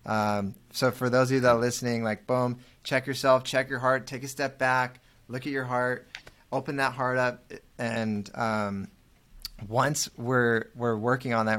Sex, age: male, 20-39